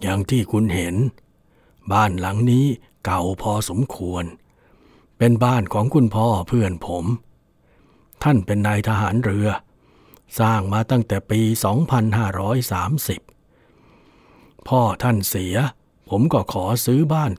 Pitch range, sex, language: 100-135 Hz, male, English